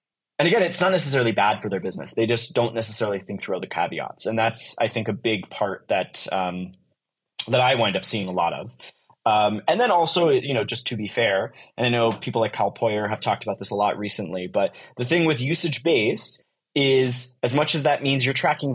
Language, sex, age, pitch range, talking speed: English, male, 20-39, 110-135 Hz, 225 wpm